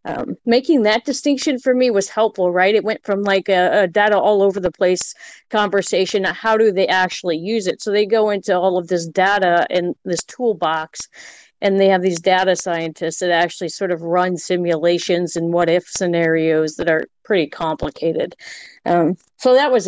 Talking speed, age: 185 wpm, 40-59